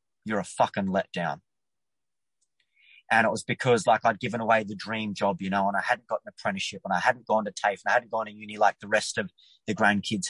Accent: Australian